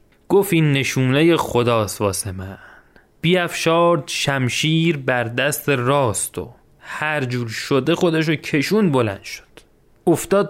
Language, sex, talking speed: Persian, male, 115 wpm